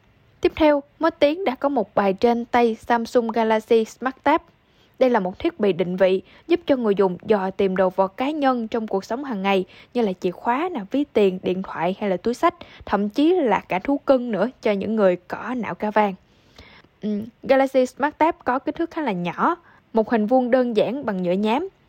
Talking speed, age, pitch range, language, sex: 220 wpm, 10-29, 205-275 Hz, Vietnamese, female